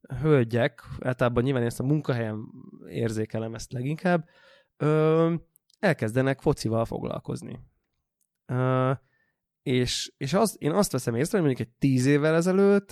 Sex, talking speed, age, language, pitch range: male, 130 wpm, 20-39, Hungarian, 125-155 Hz